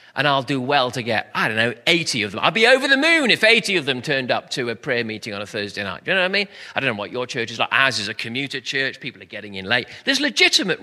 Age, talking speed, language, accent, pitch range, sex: 40-59, 315 wpm, English, British, 115-185 Hz, male